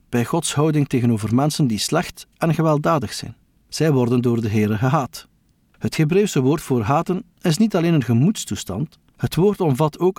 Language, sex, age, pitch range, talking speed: Dutch, male, 50-69, 120-165 Hz, 175 wpm